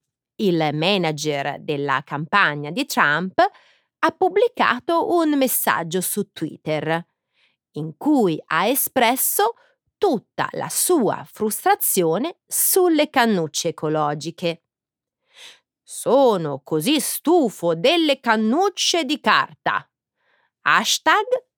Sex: female